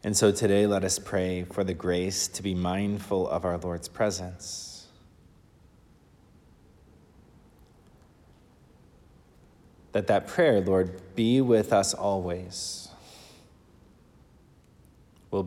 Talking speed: 95 wpm